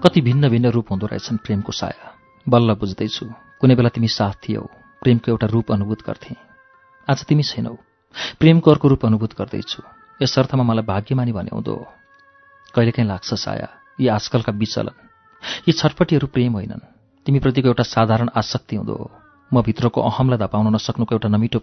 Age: 40-59